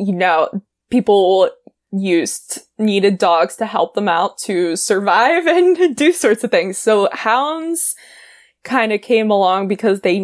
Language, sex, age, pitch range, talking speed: English, female, 20-39, 190-230 Hz, 150 wpm